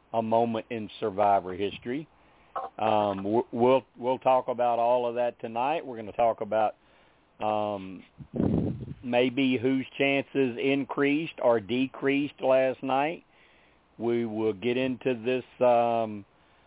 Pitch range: 105-130 Hz